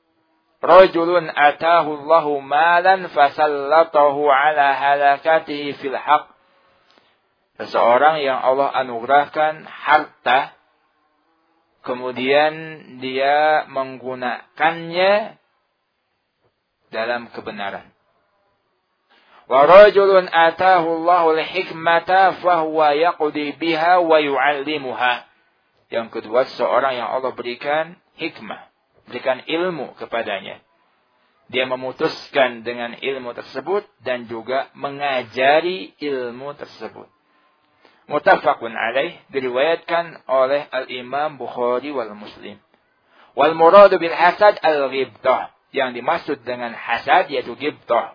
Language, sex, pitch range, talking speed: Indonesian, male, 130-165 Hz, 65 wpm